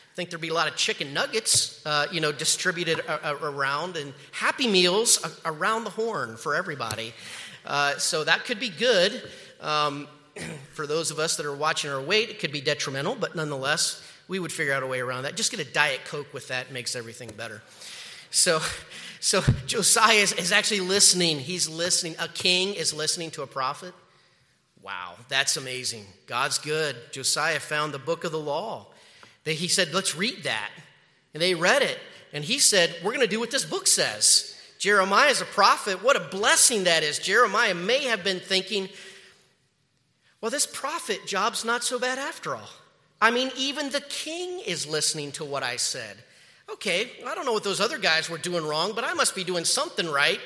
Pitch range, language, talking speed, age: 150-215 Hz, English, 195 wpm, 30-49